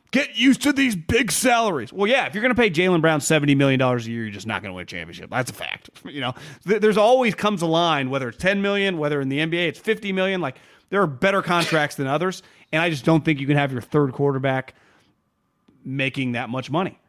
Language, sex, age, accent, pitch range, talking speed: English, male, 30-49, American, 140-185 Hz, 240 wpm